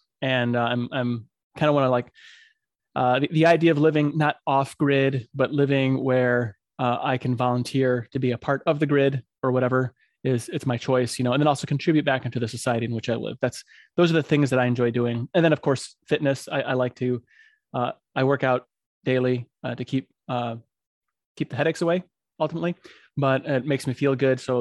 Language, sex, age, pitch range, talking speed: English, male, 20-39, 125-150 Hz, 220 wpm